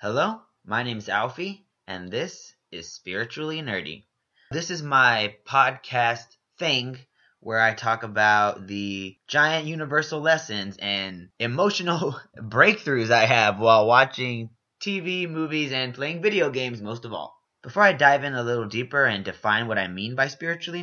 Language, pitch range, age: English, 110-145 Hz, 20-39